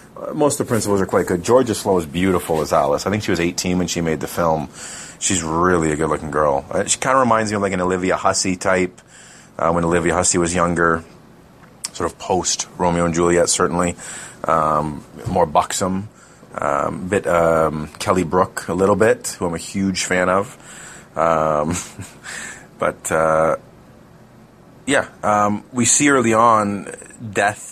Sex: male